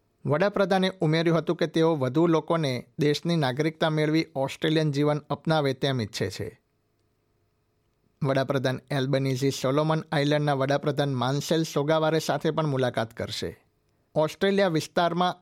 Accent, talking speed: native, 115 wpm